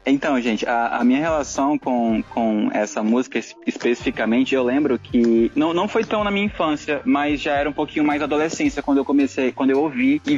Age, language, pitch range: 20-39, Portuguese, 125-165 Hz